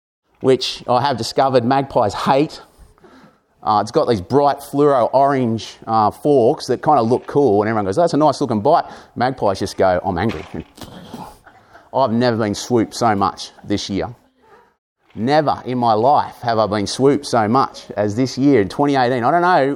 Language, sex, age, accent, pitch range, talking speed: English, male, 30-49, Australian, 115-155 Hz, 170 wpm